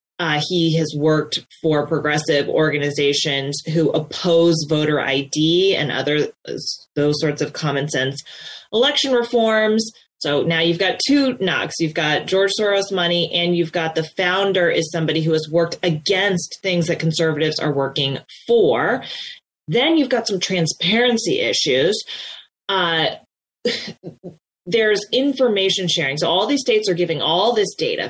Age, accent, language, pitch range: 30-49, American, English, 160-195 Hz